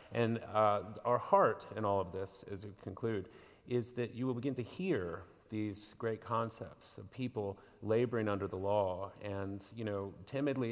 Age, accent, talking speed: 30-49, American, 175 wpm